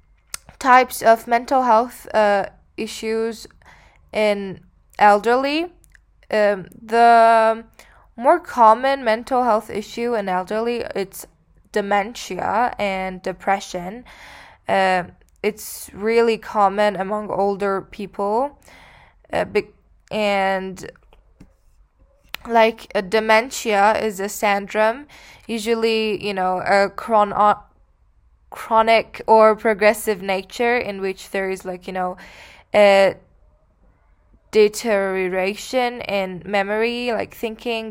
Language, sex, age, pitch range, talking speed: English, female, 10-29, 195-230 Hz, 95 wpm